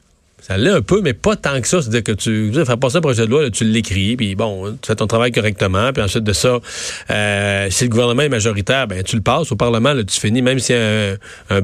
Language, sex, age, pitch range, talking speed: French, male, 40-59, 120-155 Hz, 285 wpm